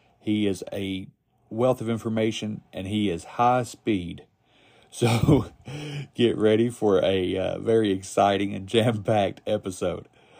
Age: 40-59